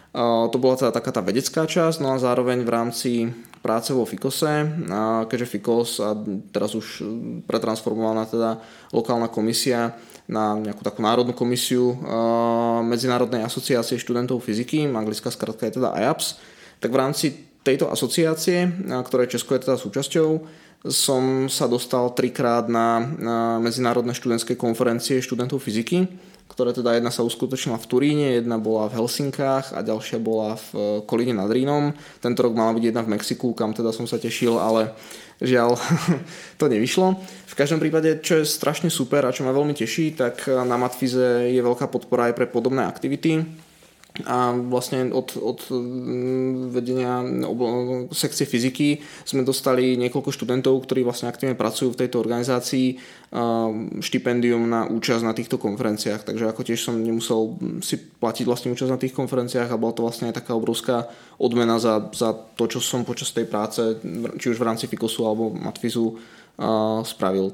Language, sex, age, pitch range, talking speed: Czech, male, 20-39, 115-130 Hz, 155 wpm